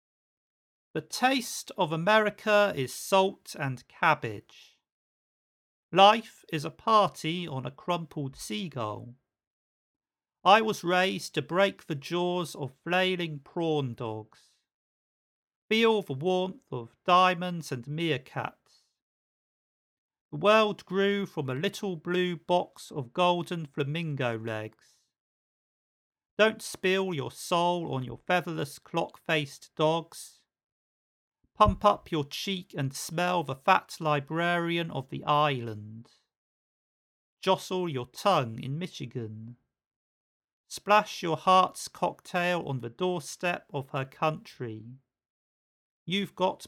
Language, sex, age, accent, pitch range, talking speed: English, male, 40-59, British, 135-180 Hz, 110 wpm